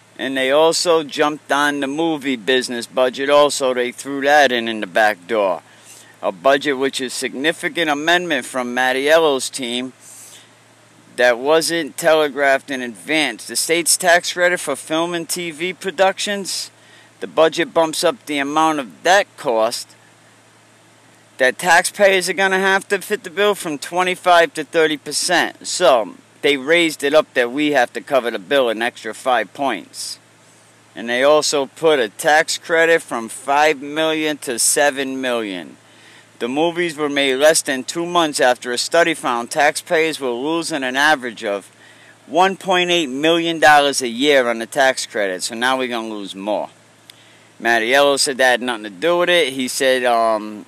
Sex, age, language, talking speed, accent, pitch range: male, 50-69, English, 160 wpm, American, 125-165 Hz